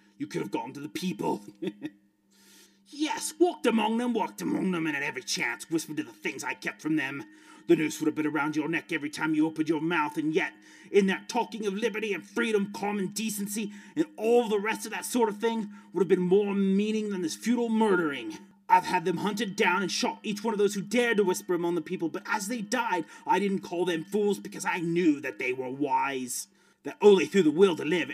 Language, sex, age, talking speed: English, male, 30-49, 235 wpm